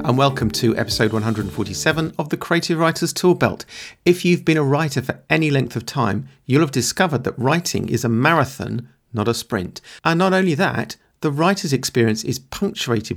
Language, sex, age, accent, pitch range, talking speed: English, male, 50-69, British, 110-150 Hz, 185 wpm